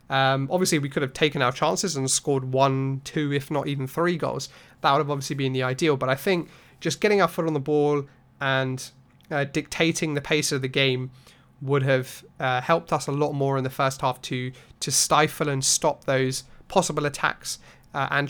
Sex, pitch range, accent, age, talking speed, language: male, 135-155 Hz, British, 30-49, 210 wpm, English